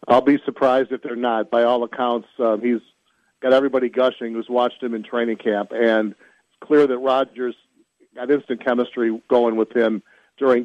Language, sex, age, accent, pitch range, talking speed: English, male, 40-59, American, 120-140 Hz, 180 wpm